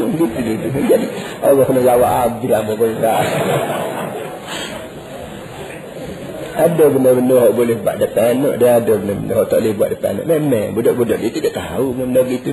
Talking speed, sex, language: 140 wpm, male, Malay